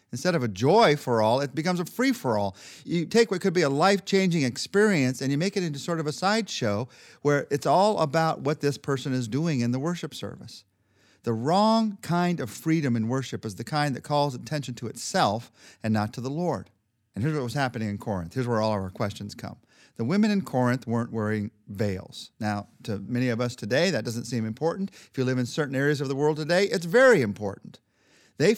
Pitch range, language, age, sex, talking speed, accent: 120-170 Hz, English, 40-59, male, 220 wpm, American